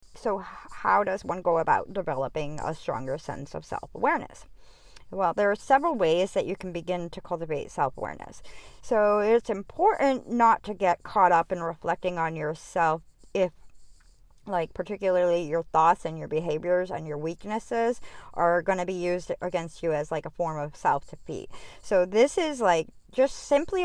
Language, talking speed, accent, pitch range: English, 165 wpm, American, 170-220 Hz